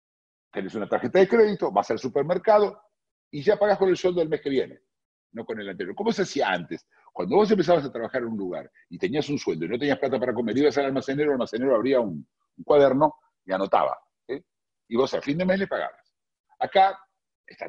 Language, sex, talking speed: Spanish, male, 220 wpm